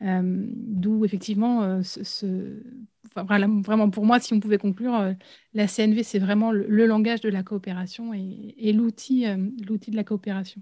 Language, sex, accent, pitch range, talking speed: French, female, French, 200-245 Hz, 190 wpm